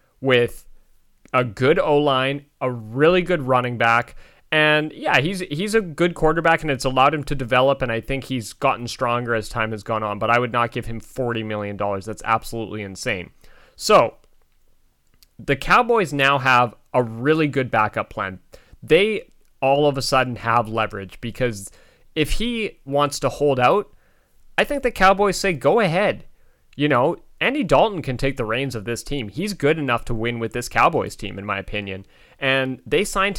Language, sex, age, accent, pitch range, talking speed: English, male, 30-49, American, 110-145 Hz, 185 wpm